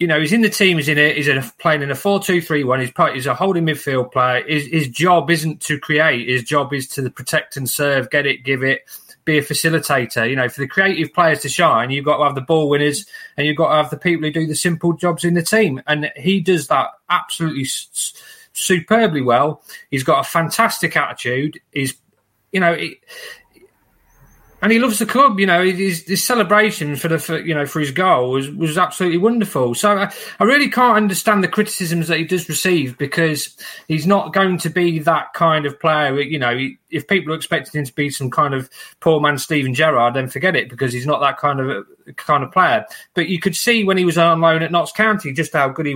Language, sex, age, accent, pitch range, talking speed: English, male, 30-49, British, 135-180 Hz, 230 wpm